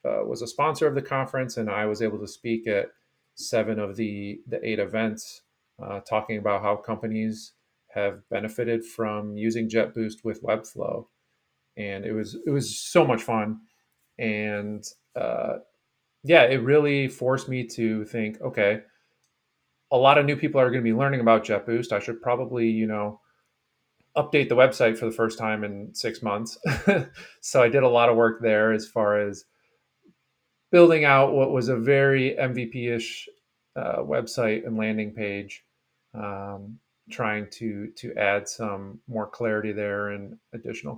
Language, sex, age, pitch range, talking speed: English, male, 30-49, 105-125 Hz, 165 wpm